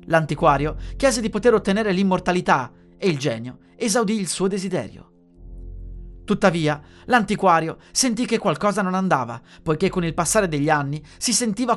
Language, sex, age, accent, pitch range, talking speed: Italian, male, 30-49, native, 125-200 Hz, 145 wpm